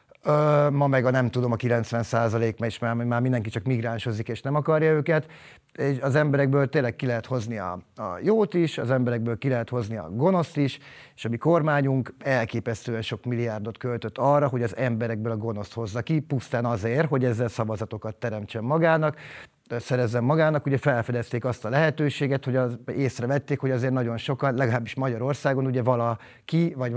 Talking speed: 175 wpm